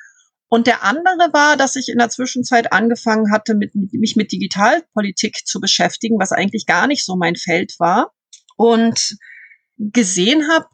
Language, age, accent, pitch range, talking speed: German, 40-59, German, 195-250 Hz, 150 wpm